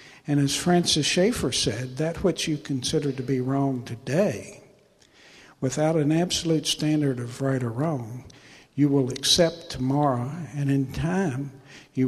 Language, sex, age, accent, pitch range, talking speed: English, male, 60-79, American, 135-155 Hz, 145 wpm